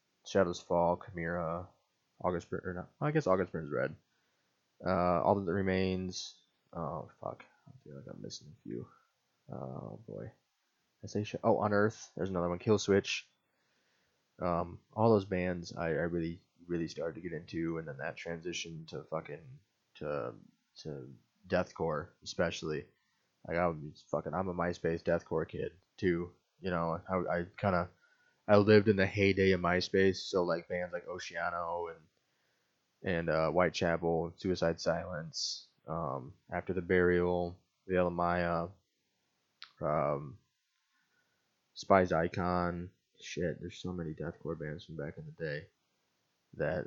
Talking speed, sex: 145 wpm, male